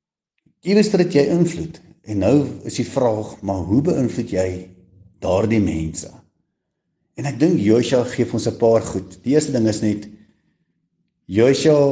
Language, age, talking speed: English, 50-69, 150 wpm